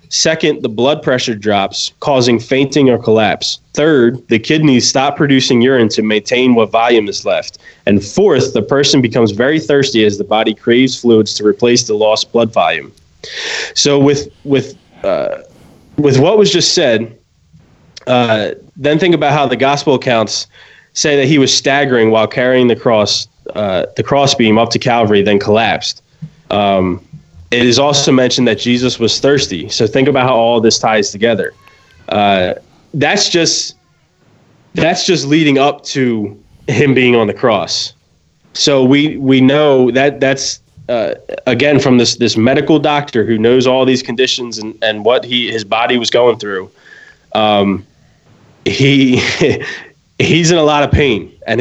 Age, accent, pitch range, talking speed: 20-39, American, 115-140 Hz, 165 wpm